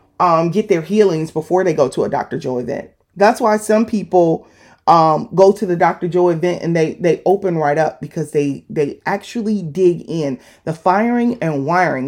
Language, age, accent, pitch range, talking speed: English, 30-49, American, 150-195 Hz, 195 wpm